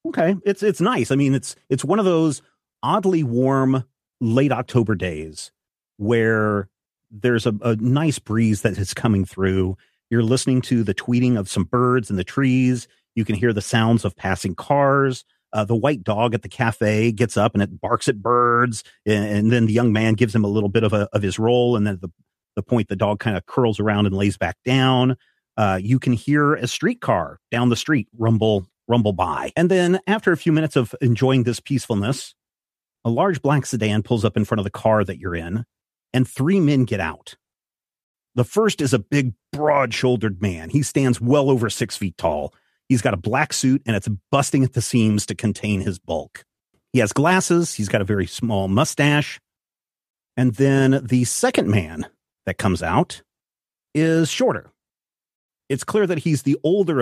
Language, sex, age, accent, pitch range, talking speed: English, male, 40-59, American, 105-135 Hz, 195 wpm